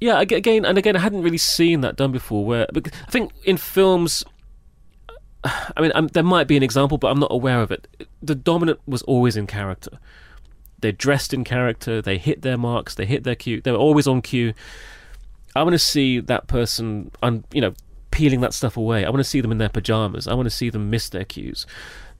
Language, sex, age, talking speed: English, male, 30-49, 220 wpm